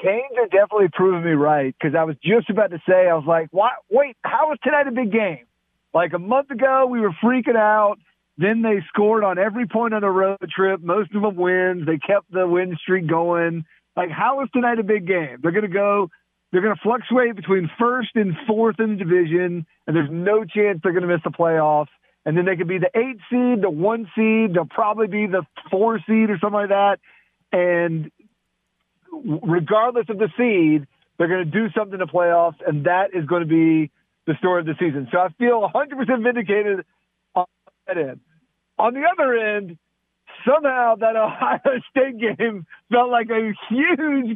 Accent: American